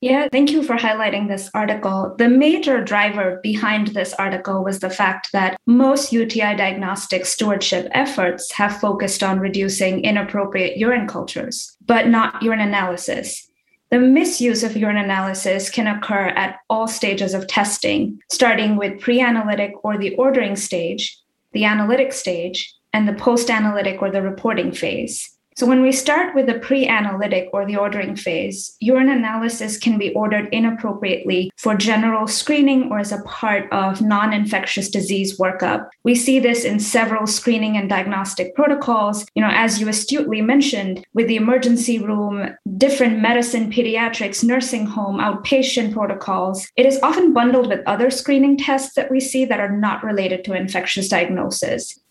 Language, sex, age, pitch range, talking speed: English, female, 20-39, 195-245 Hz, 155 wpm